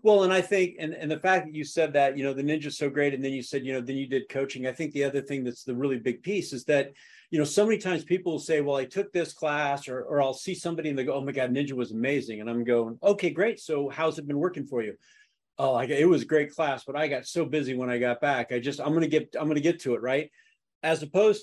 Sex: male